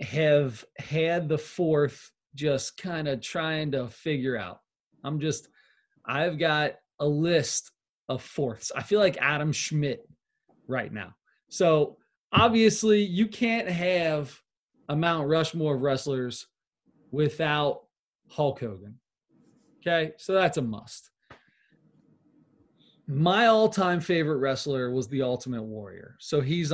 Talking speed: 120 wpm